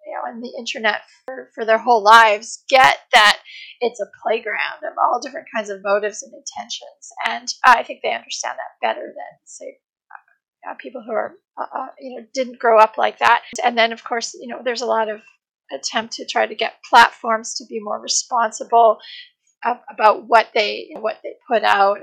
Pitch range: 220-305 Hz